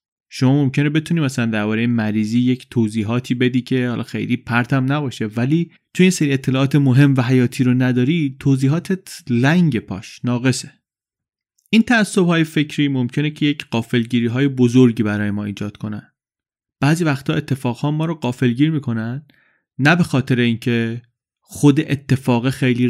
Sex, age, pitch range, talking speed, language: male, 30-49, 120-150 Hz, 145 wpm, Persian